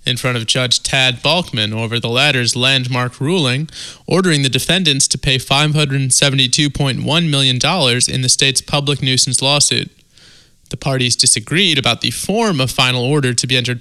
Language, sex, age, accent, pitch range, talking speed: English, male, 20-39, American, 125-150 Hz, 155 wpm